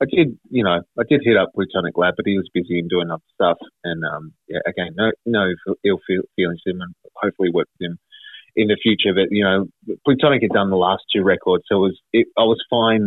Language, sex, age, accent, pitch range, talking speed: English, male, 30-49, Australian, 90-120 Hz, 245 wpm